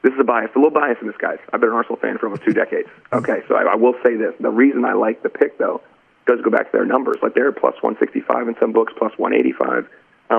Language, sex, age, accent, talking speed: English, male, 40-59, American, 275 wpm